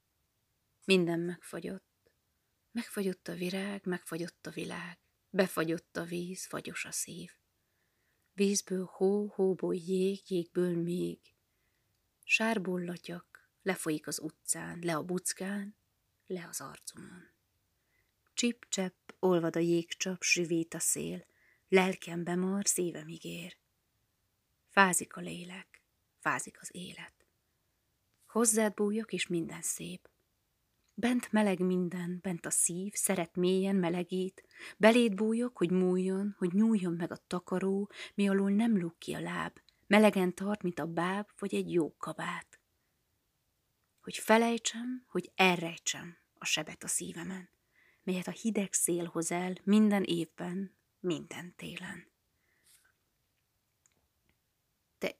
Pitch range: 170-200 Hz